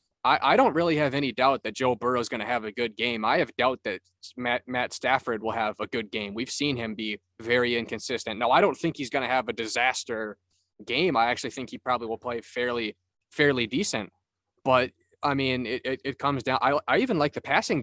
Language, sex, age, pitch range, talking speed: English, male, 20-39, 110-130 Hz, 230 wpm